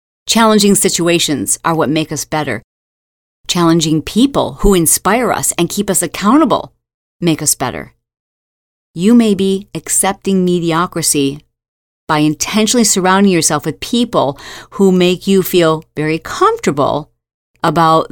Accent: American